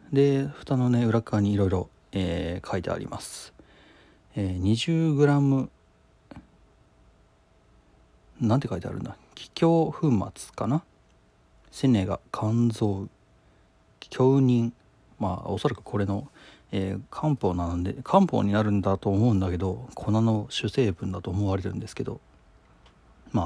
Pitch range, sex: 95-130 Hz, male